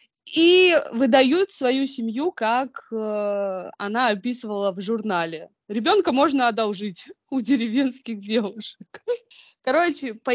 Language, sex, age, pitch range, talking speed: Russian, female, 20-39, 205-265 Hz, 100 wpm